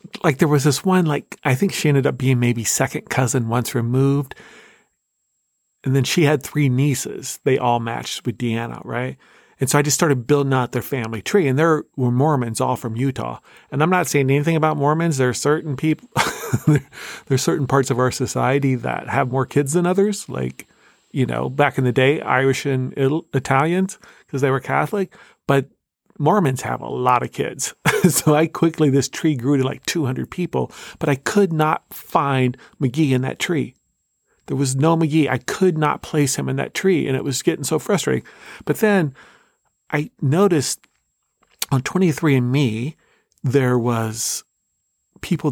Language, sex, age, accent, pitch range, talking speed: English, male, 40-59, American, 130-155 Hz, 185 wpm